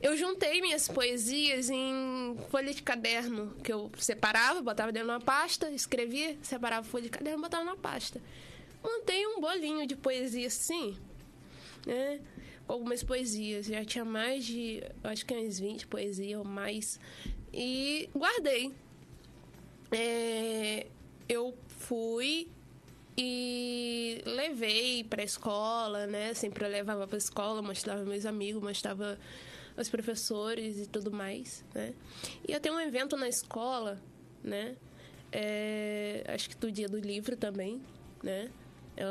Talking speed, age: 135 wpm, 20-39